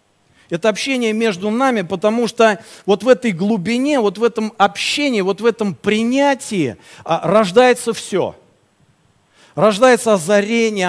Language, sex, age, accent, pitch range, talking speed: Russian, male, 40-59, native, 170-225 Hz, 120 wpm